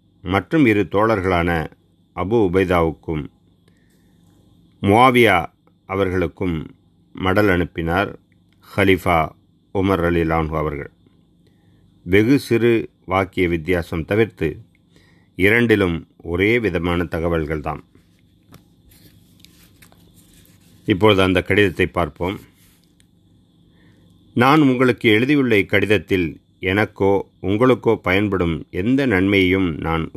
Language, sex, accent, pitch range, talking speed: Tamil, male, native, 85-105 Hz, 75 wpm